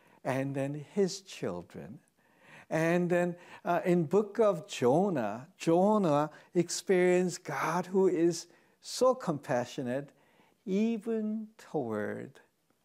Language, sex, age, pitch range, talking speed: English, male, 60-79, 140-190 Hz, 95 wpm